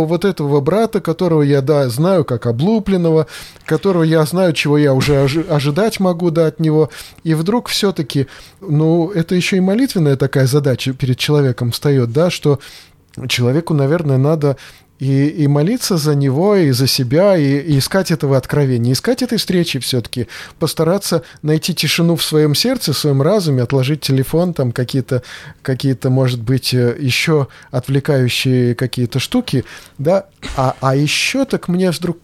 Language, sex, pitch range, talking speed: Russian, male, 140-175 Hz, 155 wpm